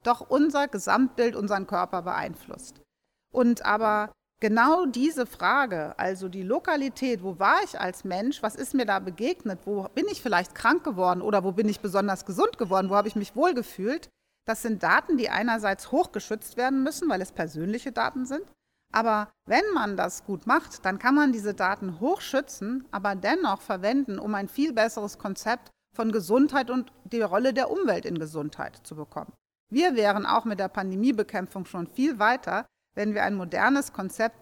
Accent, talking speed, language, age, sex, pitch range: German, 175 wpm, German, 40-59, female, 190-255 Hz